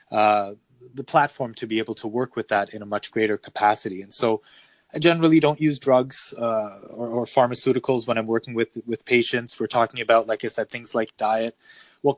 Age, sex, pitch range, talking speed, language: 20-39, male, 110-135 Hz, 205 wpm, English